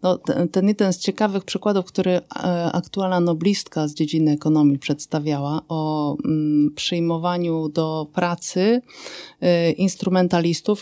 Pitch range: 160-190 Hz